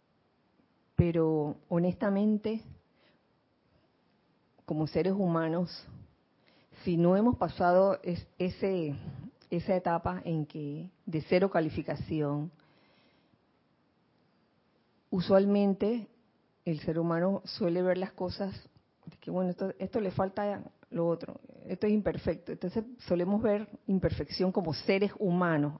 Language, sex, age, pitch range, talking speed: Spanish, female, 40-59, 170-215 Hz, 105 wpm